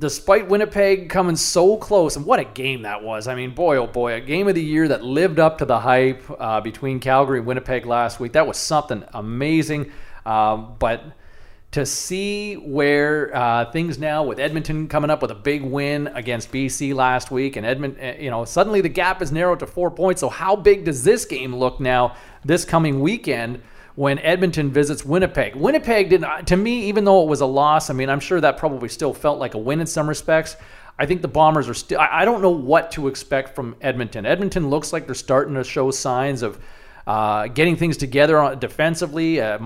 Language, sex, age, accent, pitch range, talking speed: English, male, 40-59, American, 130-160 Hz, 210 wpm